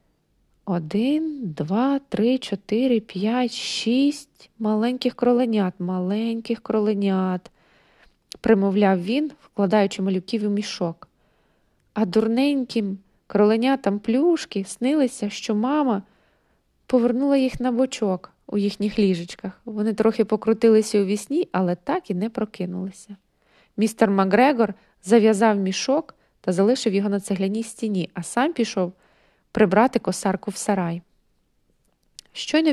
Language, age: Ukrainian, 20-39